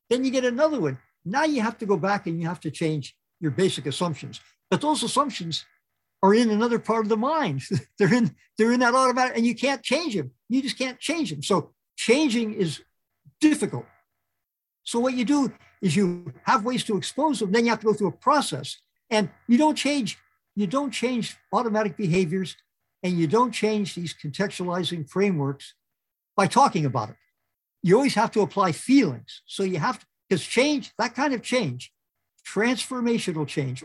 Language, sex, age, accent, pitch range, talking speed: English, male, 60-79, American, 175-245 Hz, 190 wpm